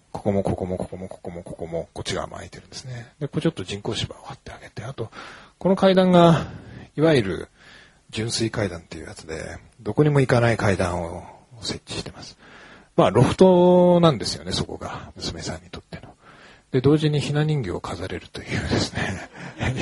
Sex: male